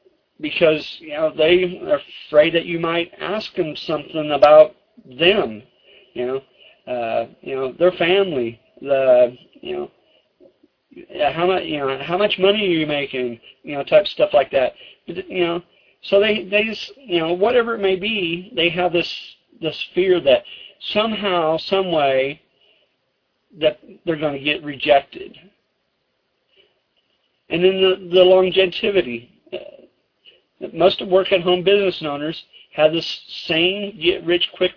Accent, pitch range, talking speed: American, 155-195 Hz, 140 wpm